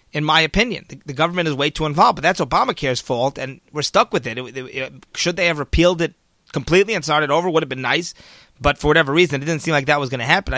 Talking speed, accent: 270 wpm, American